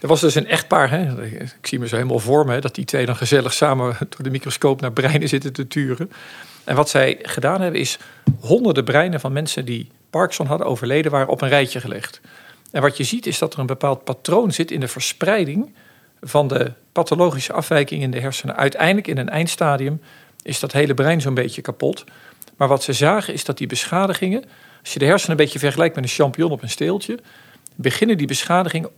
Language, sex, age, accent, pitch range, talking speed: Dutch, male, 50-69, Dutch, 135-170 Hz, 205 wpm